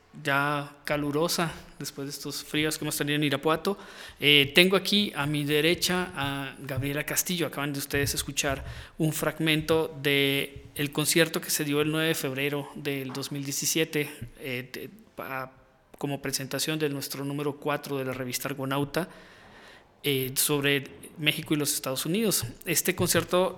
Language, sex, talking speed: Spanish, male, 155 wpm